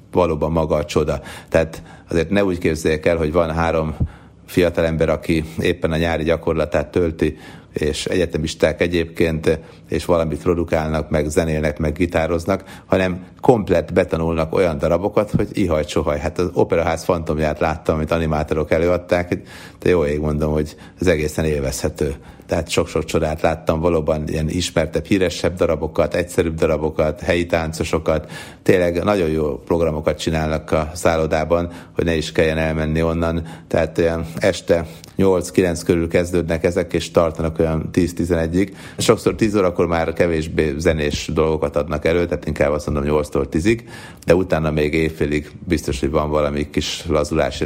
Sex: male